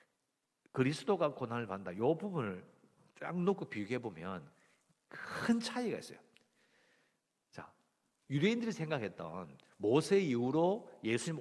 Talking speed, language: 95 wpm, English